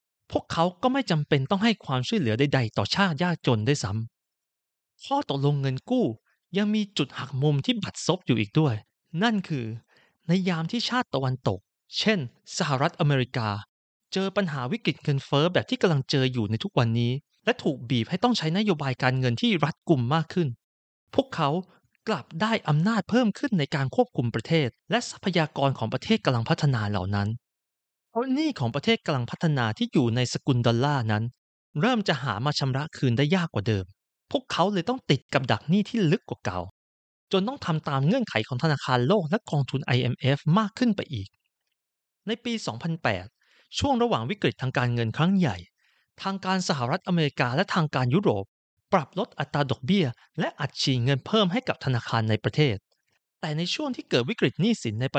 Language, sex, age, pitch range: Thai, male, 30-49, 125-195 Hz